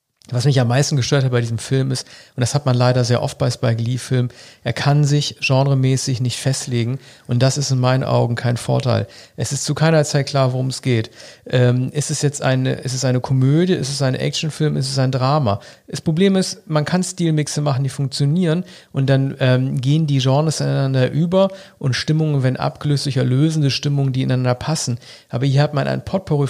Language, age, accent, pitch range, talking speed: German, 40-59, German, 125-150 Hz, 210 wpm